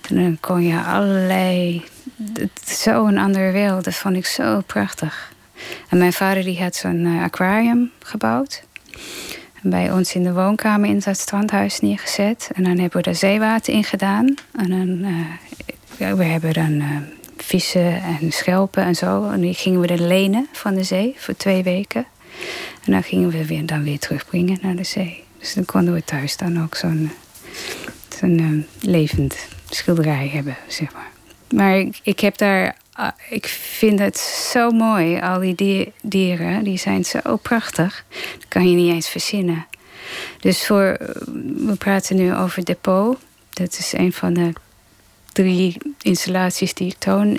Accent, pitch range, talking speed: Dutch, 170-200 Hz, 160 wpm